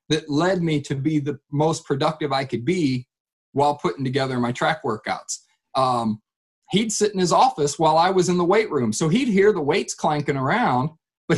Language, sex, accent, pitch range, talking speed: English, male, American, 135-170 Hz, 200 wpm